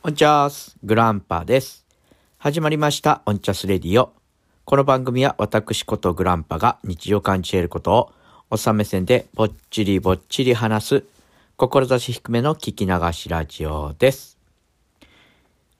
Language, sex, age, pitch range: Japanese, male, 50-69, 85-110 Hz